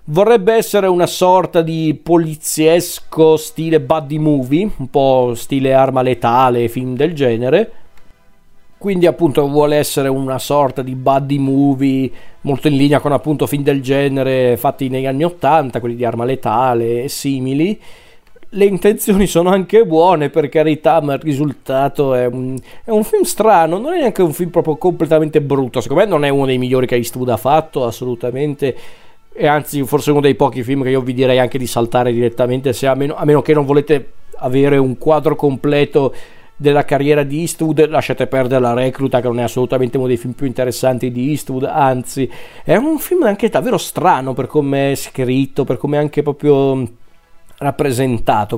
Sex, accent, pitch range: male, native, 130-155 Hz